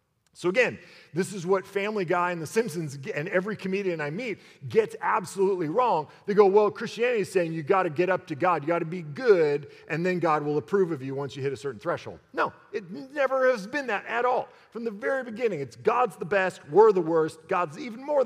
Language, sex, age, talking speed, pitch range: English, male, 40-59, 235 wpm, 160-215 Hz